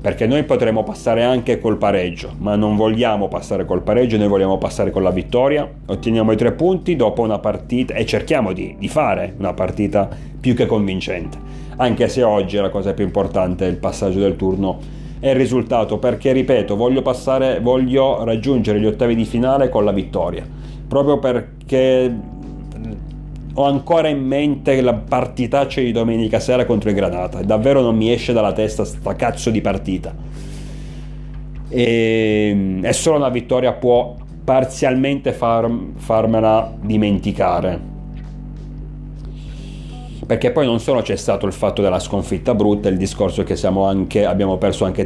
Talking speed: 155 wpm